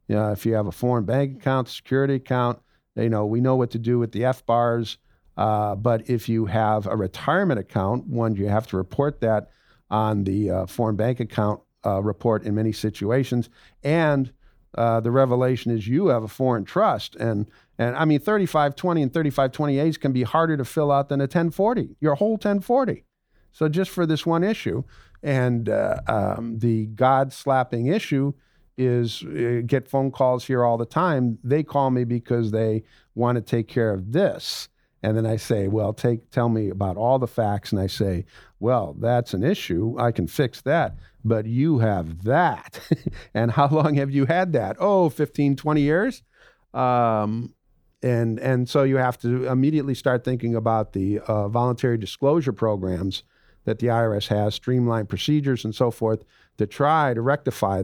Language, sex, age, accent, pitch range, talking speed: English, male, 50-69, American, 110-135 Hz, 180 wpm